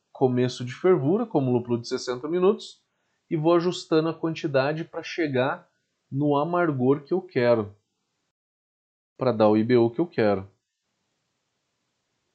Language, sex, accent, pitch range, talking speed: Portuguese, male, Brazilian, 120-190 Hz, 135 wpm